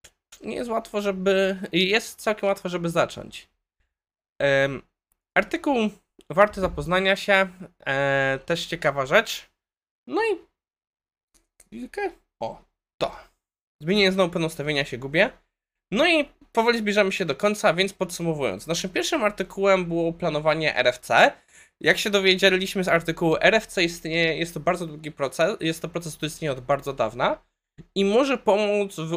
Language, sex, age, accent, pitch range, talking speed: Polish, male, 20-39, native, 145-205 Hz, 140 wpm